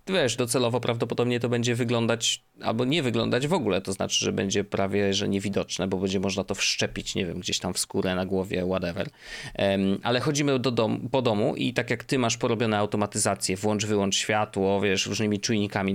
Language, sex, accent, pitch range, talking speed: Polish, male, native, 105-125 Hz, 195 wpm